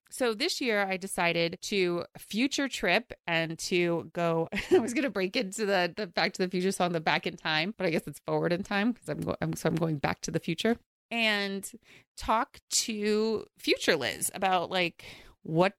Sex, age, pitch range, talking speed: female, 30-49, 160-215 Hz, 200 wpm